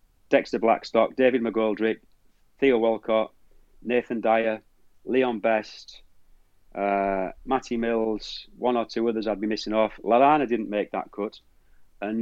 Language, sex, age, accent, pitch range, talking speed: English, male, 30-49, British, 105-120 Hz, 135 wpm